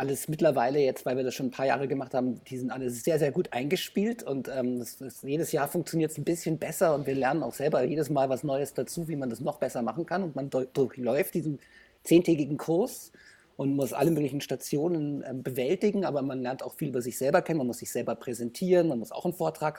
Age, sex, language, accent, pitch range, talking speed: 50-69, male, German, German, 130-170 Hz, 245 wpm